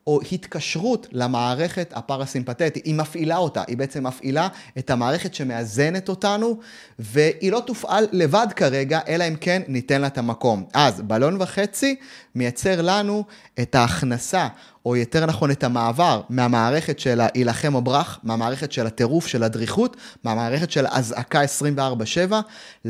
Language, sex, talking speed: Hebrew, male, 135 wpm